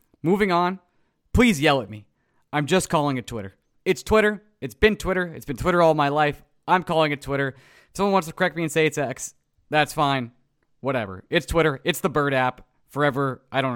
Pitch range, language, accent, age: 135-200 Hz, English, American, 20-39